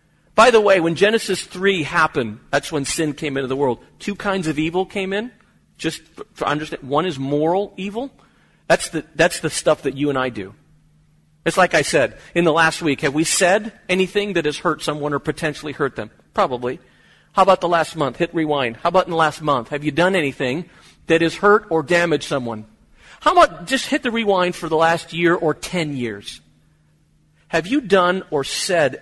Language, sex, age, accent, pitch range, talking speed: English, male, 40-59, American, 135-170 Hz, 205 wpm